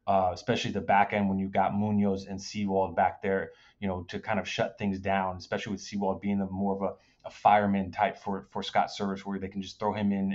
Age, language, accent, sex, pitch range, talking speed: 30-49, English, American, male, 100-115 Hz, 250 wpm